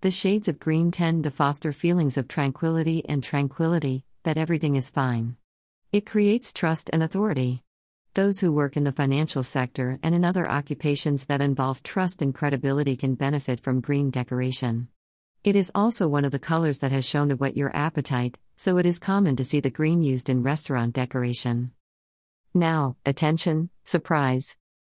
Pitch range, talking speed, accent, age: 130-170 Hz, 170 wpm, American, 50-69